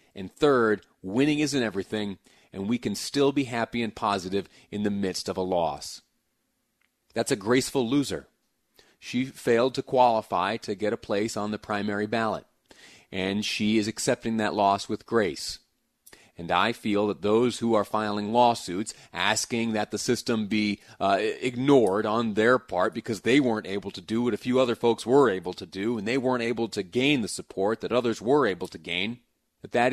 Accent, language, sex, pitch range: American, English, male, 105-135 Hz